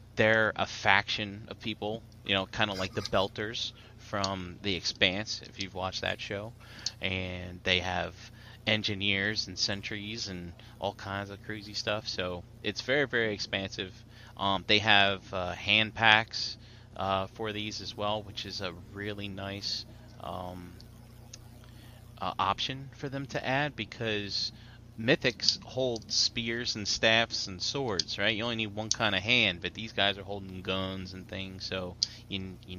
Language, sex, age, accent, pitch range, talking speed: English, male, 30-49, American, 95-115 Hz, 160 wpm